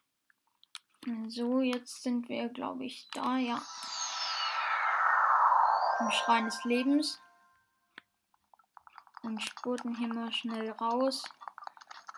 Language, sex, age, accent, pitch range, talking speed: German, female, 10-29, German, 230-260 Hz, 90 wpm